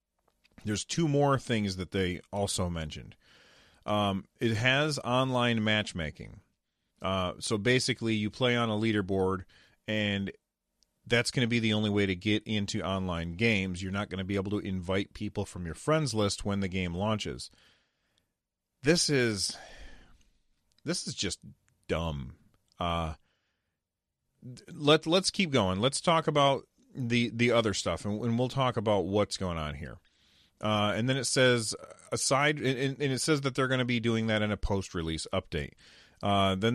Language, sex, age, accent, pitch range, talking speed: English, male, 30-49, American, 95-125 Hz, 165 wpm